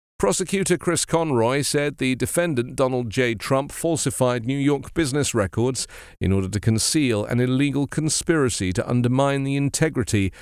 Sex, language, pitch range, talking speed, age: male, English, 100-140 Hz, 145 wpm, 40-59